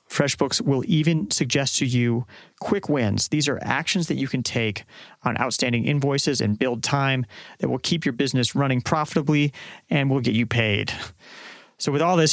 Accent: American